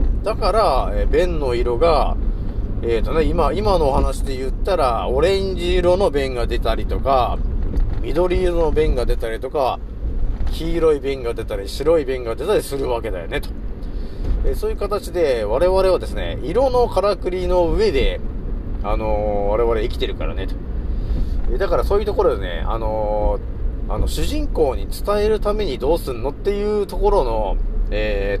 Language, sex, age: Japanese, male, 40-59